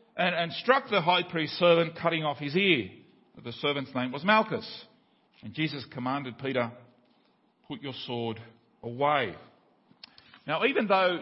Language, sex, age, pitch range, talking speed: English, male, 50-69, 150-235 Hz, 140 wpm